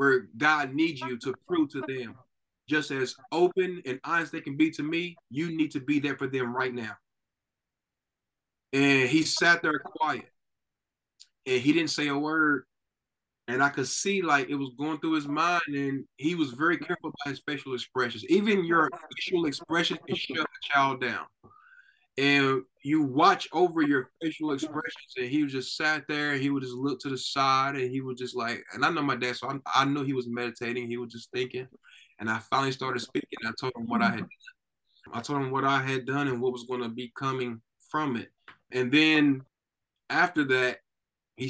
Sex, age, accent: male, 20-39, American